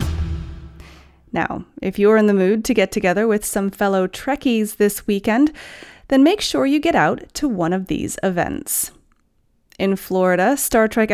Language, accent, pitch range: English, American, 190-255 Hz